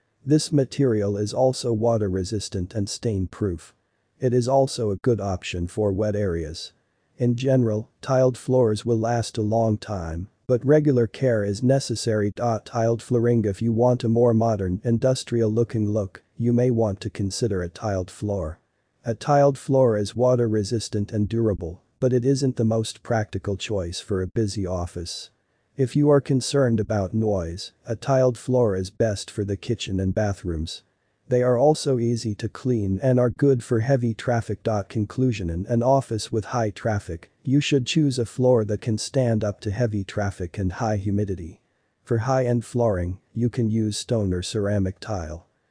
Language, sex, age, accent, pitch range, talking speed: English, male, 40-59, American, 100-125 Hz, 170 wpm